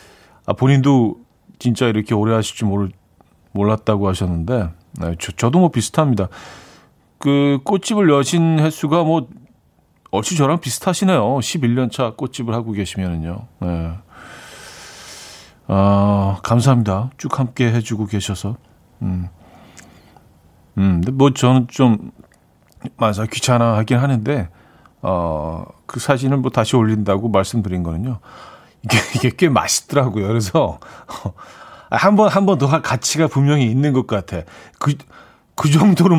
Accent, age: native, 40-59